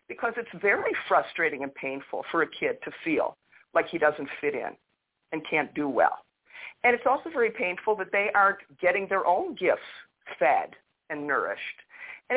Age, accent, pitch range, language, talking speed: 50-69, American, 160-245 Hz, English, 175 wpm